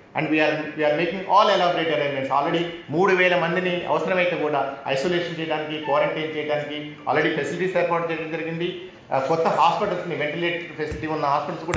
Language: Telugu